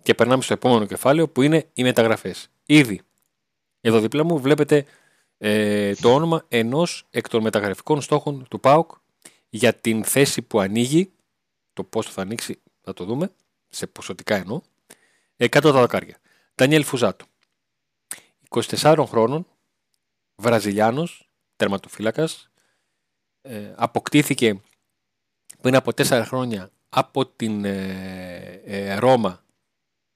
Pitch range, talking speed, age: 105-150 Hz, 110 wpm, 40-59